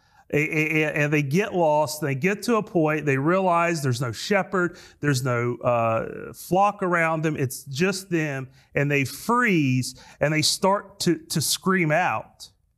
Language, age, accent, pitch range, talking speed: English, 30-49, American, 135-170 Hz, 155 wpm